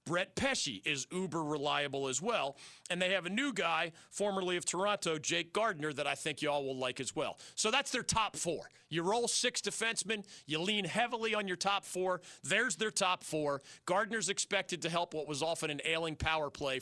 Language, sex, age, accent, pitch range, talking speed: English, male, 40-59, American, 150-225 Hz, 205 wpm